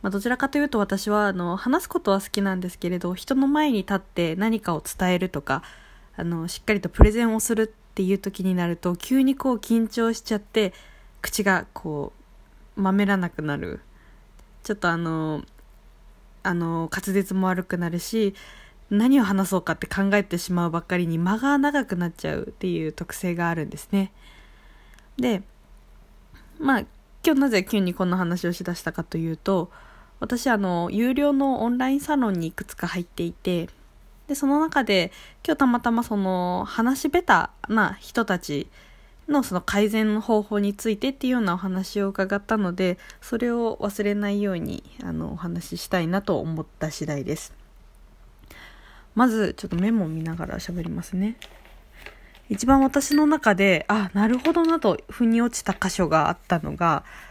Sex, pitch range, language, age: female, 175-230 Hz, Japanese, 20-39